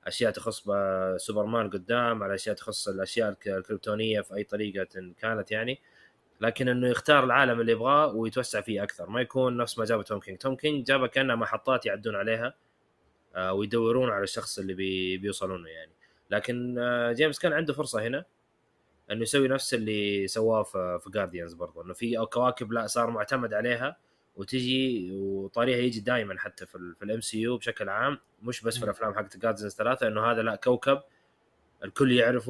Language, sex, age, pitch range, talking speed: Arabic, male, 20-39, 100-125 Hz, 165 wpm